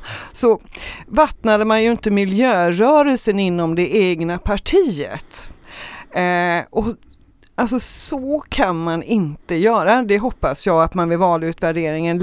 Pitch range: 170-230 Hz